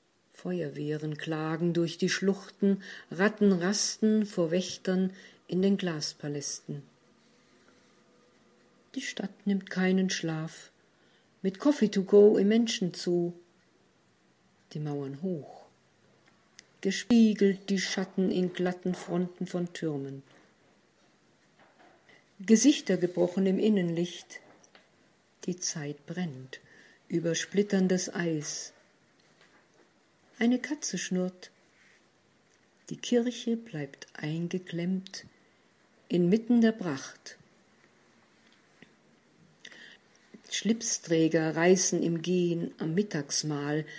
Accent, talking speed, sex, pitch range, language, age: German, 85 wpm, female, 170-200 Hz, German, 50-69